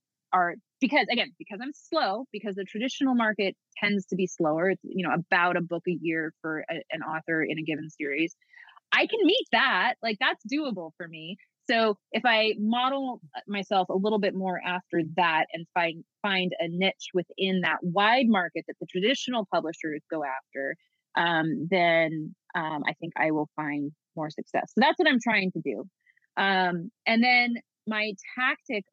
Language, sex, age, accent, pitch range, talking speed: English, female, 20-39, American, 165-225 Hz, 175 wpm